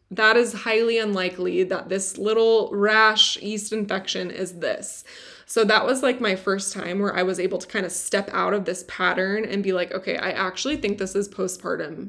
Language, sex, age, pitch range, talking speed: English, female, 20-39, 190-220 Hz, 205 wpm